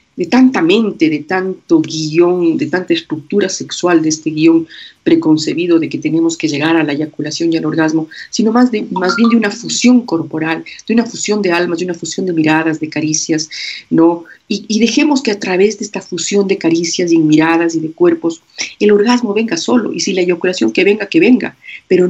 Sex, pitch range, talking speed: female, 165-255 Hz, 205 wpm